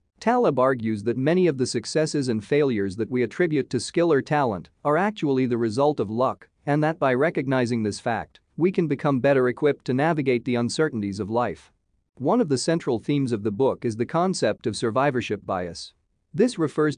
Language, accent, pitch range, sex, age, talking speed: English, American, 115-150 Hz, male, 40-59, 195 wpm